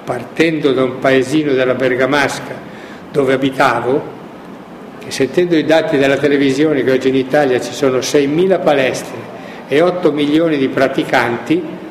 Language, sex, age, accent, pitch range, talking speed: Italian, male, 60-79, native, 130-160 Hz, 130 wpm